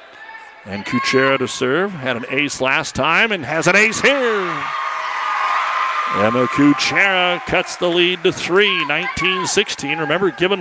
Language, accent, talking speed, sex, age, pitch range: English, American, 135 wpm, male, 50-69, 135-185 Hz